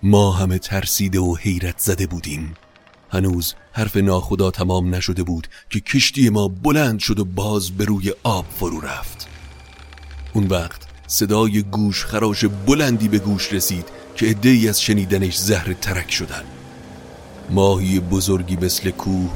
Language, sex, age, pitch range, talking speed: Persian, male, 30-49, 85-100 Hz, 140 wpm